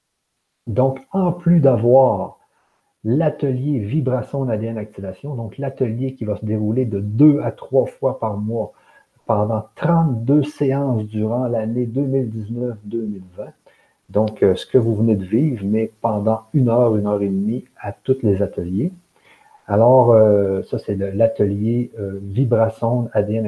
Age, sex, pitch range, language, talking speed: 60-79, male, 110-155 Hz, French, 145 wpm